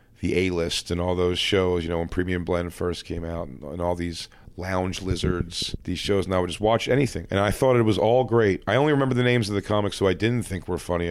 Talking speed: 265 wpm